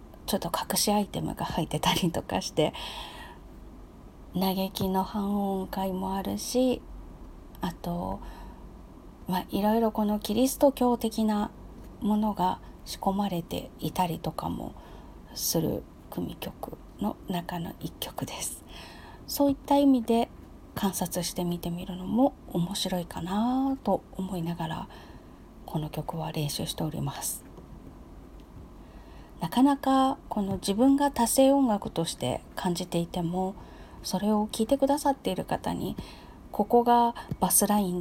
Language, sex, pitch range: Japanese, female, 175-225 Hz